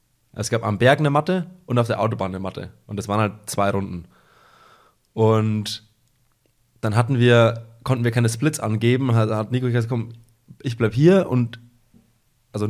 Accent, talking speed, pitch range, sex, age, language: German, 175 wpm, 105-120 Hz, male, 20-39, German